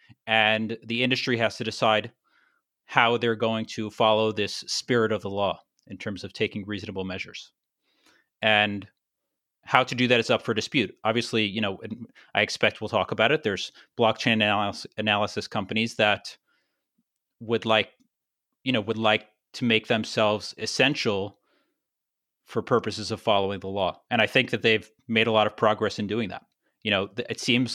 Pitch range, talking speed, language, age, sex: 105-115 Hz, 170 wpm, English, 30-49, male